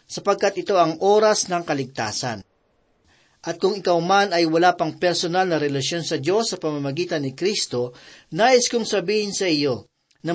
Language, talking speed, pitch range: Filipino, 170 wpm, 155-200 Hz